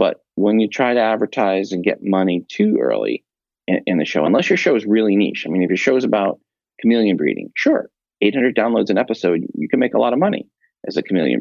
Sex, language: male, English